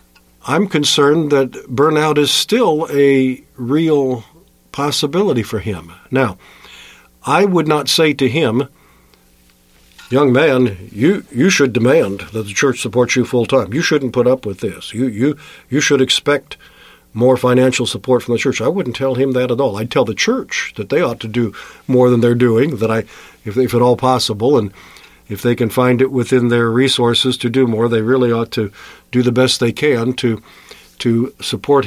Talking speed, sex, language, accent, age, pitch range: 185 wpm, male, English, American, 50-69, 100-145 Hz